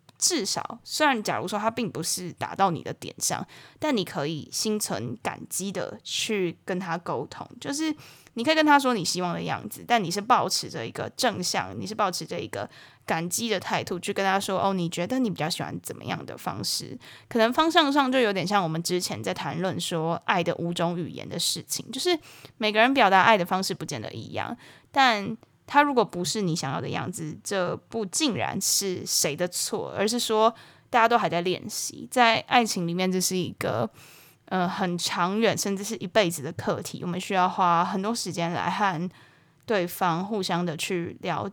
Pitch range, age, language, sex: 170-220 Hz, 20-39, Chinese, female